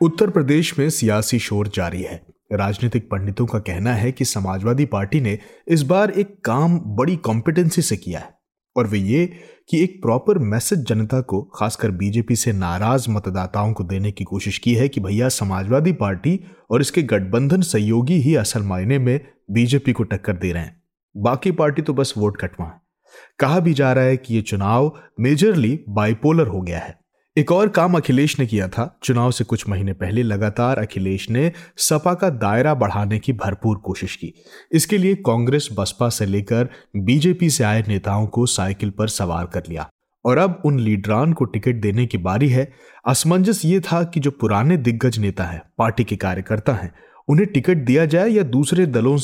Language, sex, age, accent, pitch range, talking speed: Hindi, male, 30-49, native, 105-150 Hz, 185 wpm